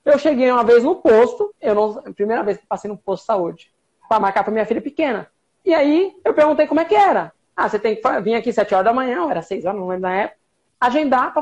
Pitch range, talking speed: 210-315 Hz, 270 wpm